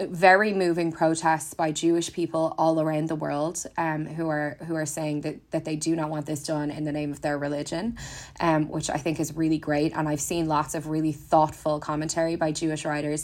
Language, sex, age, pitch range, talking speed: English, female, 20-39, 150-165 Hz, 220 wpm